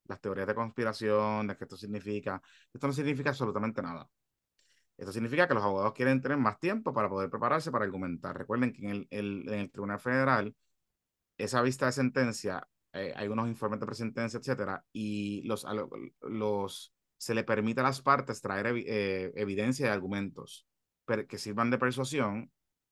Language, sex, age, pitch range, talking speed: Spanish, male, 30-49, 100-125 Hz, 175 wpm